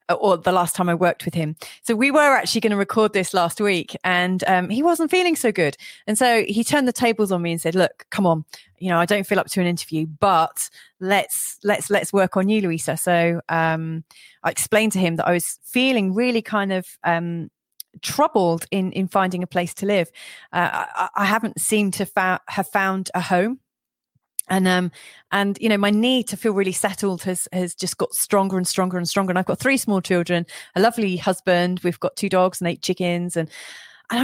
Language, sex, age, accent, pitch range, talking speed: English, female, 30-49, British, 175-210 Hz, 220 wpm